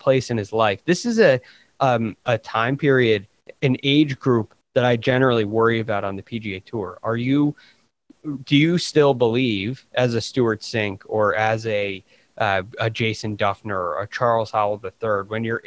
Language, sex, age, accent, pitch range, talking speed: English, male, 20-39, American, 110-130 Hz, 180 wpm